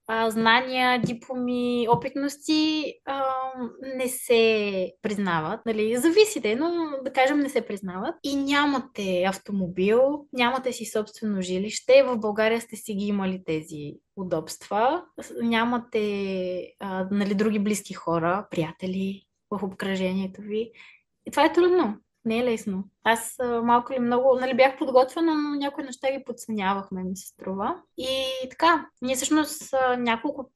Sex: female